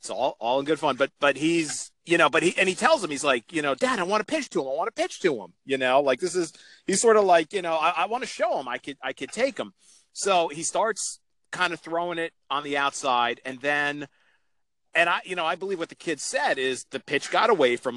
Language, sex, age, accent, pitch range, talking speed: English, male, 40-59, American, 130-175 Hz, 285 wpm